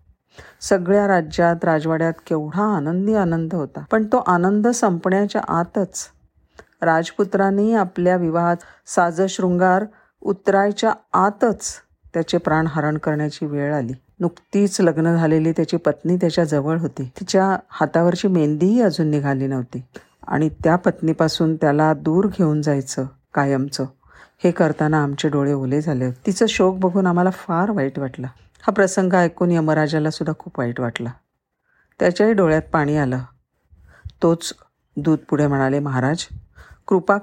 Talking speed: 120 wpm